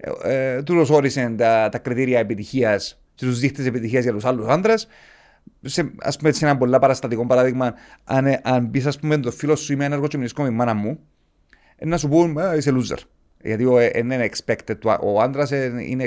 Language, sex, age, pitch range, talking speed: Greek, male, 40-59, 115-155 Hz, 180 wpm